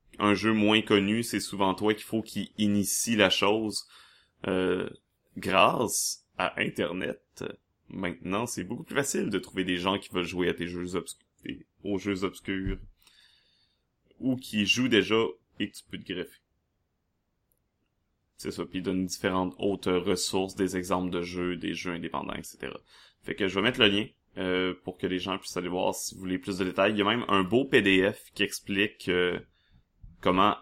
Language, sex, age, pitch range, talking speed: French, male, 30-49, 95-105 Hz, 185 wpm